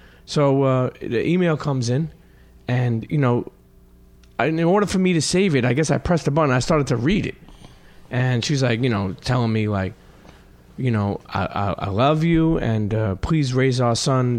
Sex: male